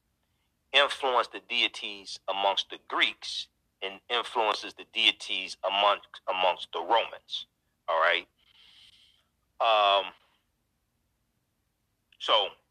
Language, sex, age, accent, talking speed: English, male, 40-59, American, 85 wpm